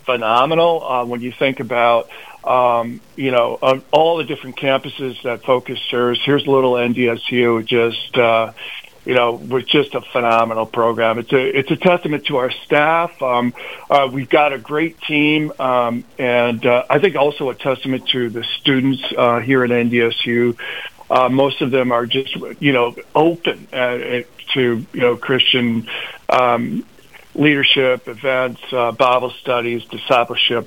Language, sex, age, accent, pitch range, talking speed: English, male, 50-69, American, 120-145 Hz, 160 wpm